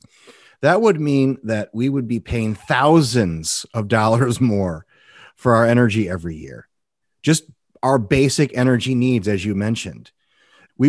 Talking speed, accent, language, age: 145 wpm, American, English, 30-49